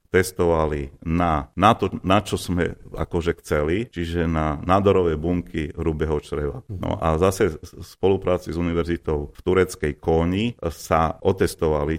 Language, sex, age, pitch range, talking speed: Slovak, male, 40-59, 75-90 Hz, 135 wpm